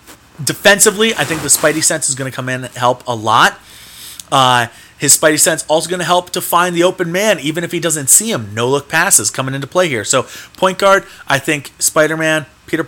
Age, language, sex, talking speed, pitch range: 30-49, English, male, 225 wpm, 120-155 Hz